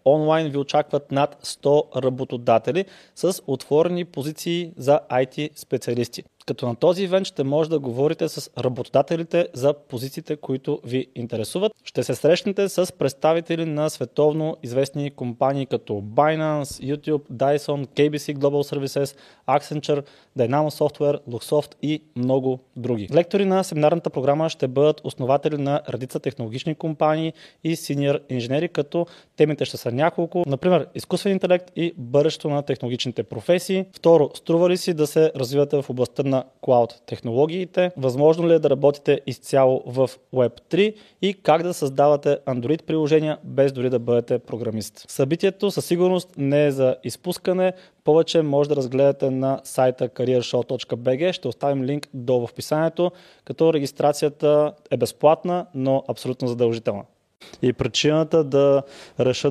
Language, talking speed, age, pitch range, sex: Bulgarian, 140 wpm, 20-39, 130-160 Hz, male